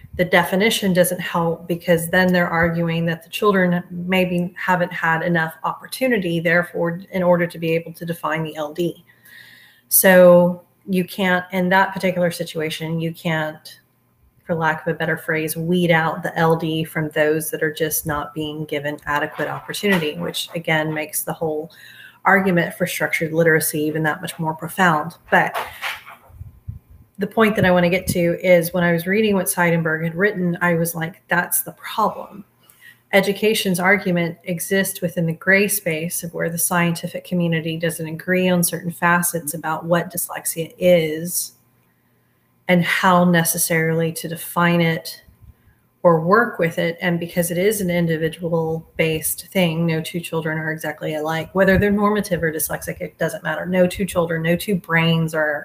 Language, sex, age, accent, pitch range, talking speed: English, female, 30-49, American, 160-180 Hz, 165 wpm